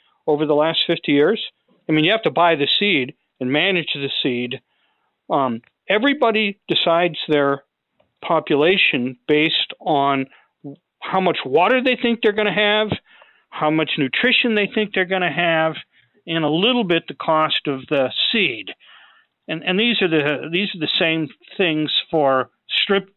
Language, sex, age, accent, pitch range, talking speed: English, male, 50-69, American, 145-195 Hz, 165 wpm